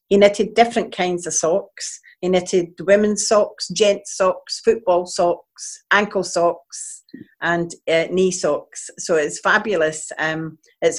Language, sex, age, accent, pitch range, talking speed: English, female, 50-69, British, 170-205 Hz, 135 wpm